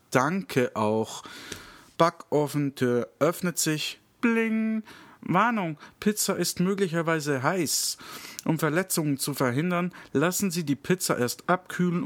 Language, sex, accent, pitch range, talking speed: German, male, German, 125-185 Hz, 105 wpm